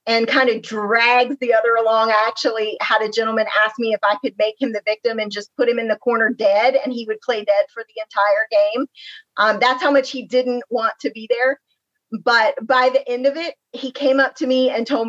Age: 30-49